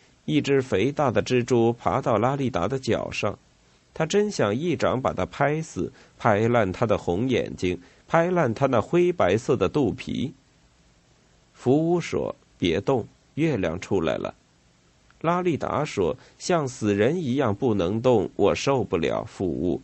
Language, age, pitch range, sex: Chinese, 50-69, 100-145 Hz, male